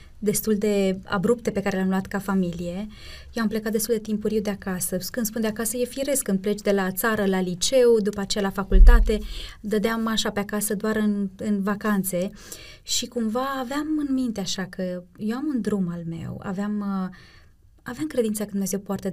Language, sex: Romanian, female